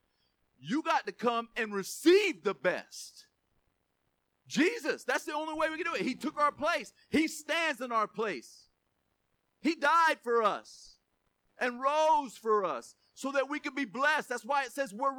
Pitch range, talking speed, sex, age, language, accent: 215-285 Hz, 180 wpm, male, 40-59, English, American